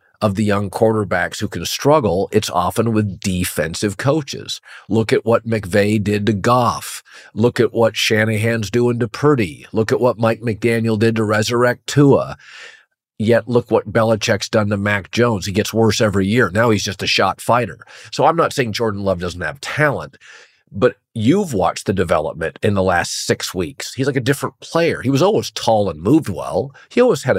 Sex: male